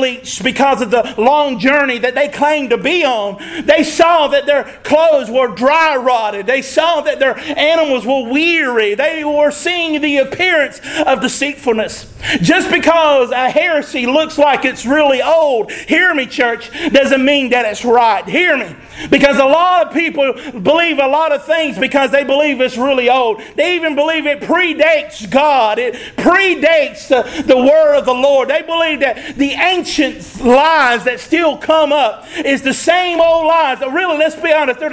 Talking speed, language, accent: 175 wpm, English, American